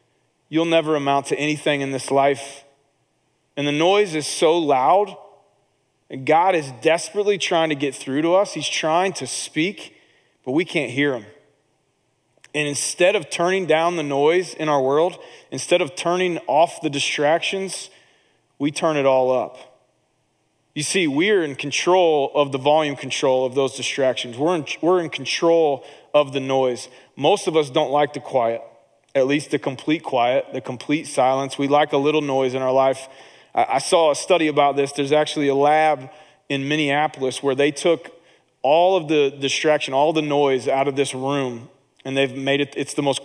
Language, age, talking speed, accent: English, 30-49, 180 wpm, American